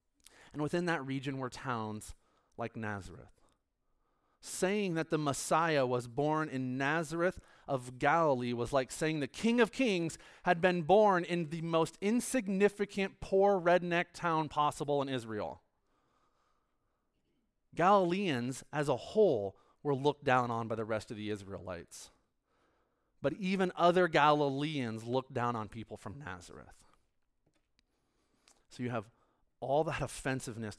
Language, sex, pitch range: English, male, 115-160 Hz